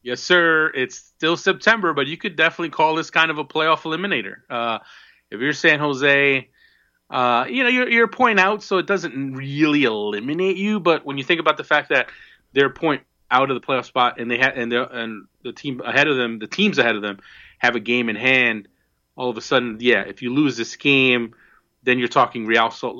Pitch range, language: 115-145 Hz, English